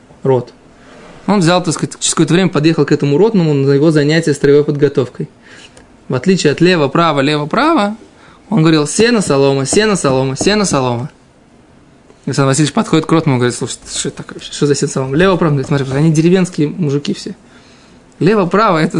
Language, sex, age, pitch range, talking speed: Russian, male, 20-39, 150-200 Hz, 150 wpm